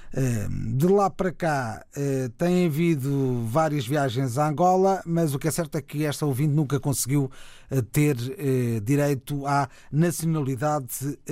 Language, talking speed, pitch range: Portuguese, 135 wpm, 130-165 Hz